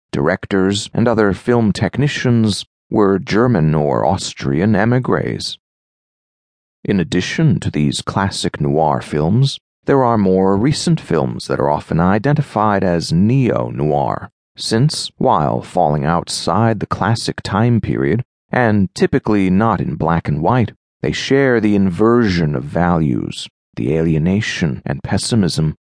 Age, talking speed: 40-59, 125 wpm